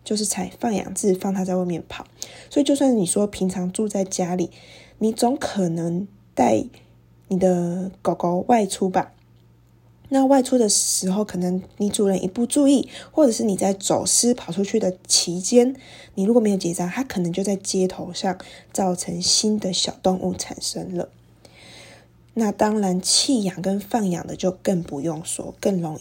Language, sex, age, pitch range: Chinese, female, 20-39, 180-210 Hz